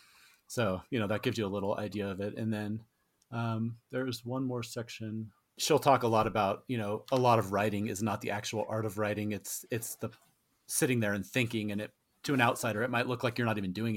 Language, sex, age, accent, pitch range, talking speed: English, male, 30-49, American, 105-120 Hz, 240 wpm